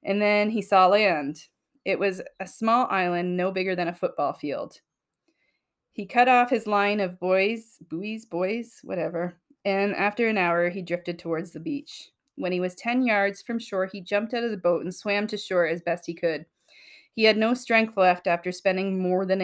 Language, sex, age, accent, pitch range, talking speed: English, female, 30-49, American, 175-215 Hz, 200 wpm